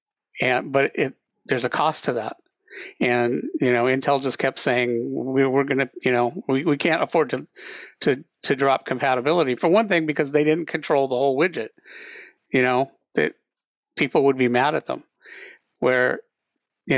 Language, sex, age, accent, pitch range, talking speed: English, male, 50-69, American, 125-155 Hz, 175 wpm